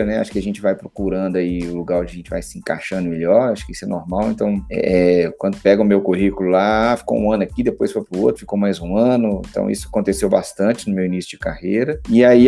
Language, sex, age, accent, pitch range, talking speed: Portuguese, male, 30-49, Brazilian, 95-120 Hz, 250 wpm